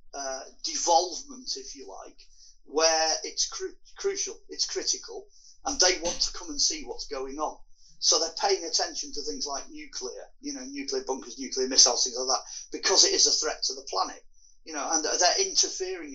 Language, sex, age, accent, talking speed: English, male, 40-59, British, 195 wpm